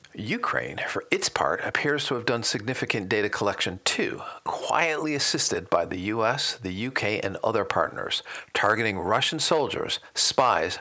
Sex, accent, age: male, American, 50-69